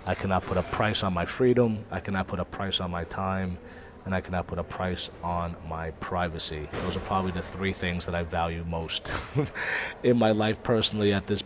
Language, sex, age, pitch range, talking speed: English, male, 30-49, 90-105 Hz, 215 wpm